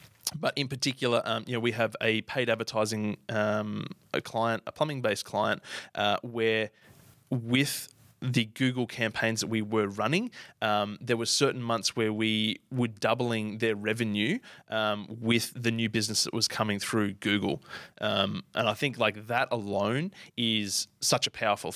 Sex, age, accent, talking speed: male, 20-39, Australian, 165 wpm